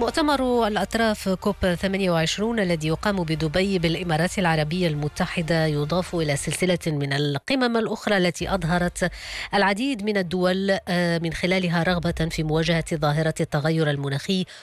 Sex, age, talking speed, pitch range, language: female, 20-39, 120 wpm, 150-185 Hz, English